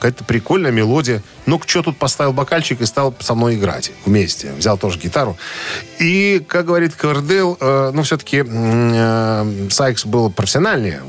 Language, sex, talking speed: Russian, male, 155 wpm